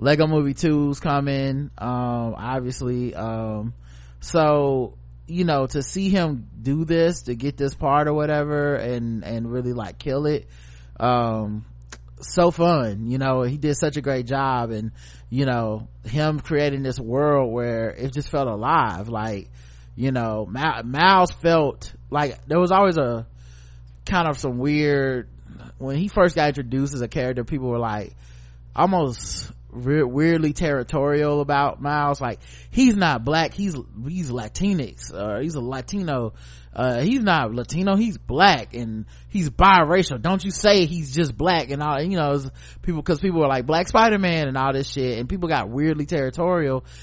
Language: English